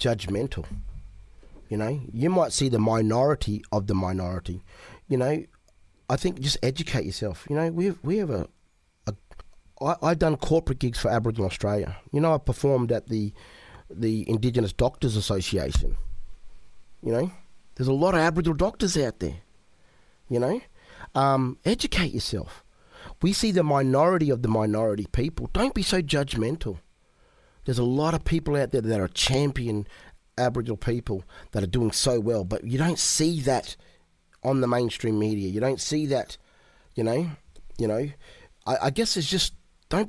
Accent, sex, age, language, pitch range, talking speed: Australian, male, 30-49, English, 105-155 Hz, 165 wpm